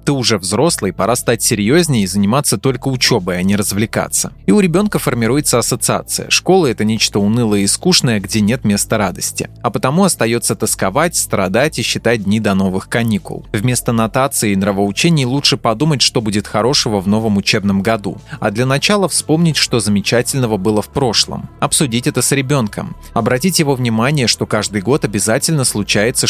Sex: male